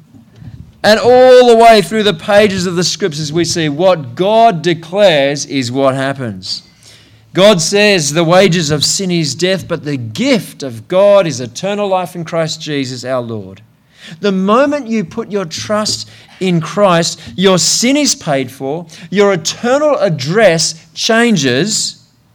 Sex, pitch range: male, 135-190 Hz